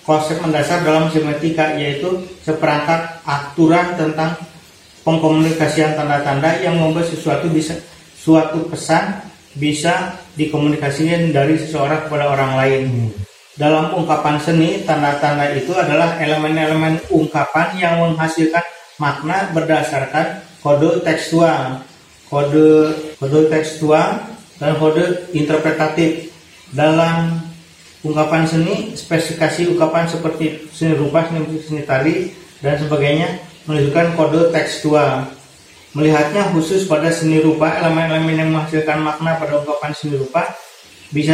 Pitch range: 145-165 Hz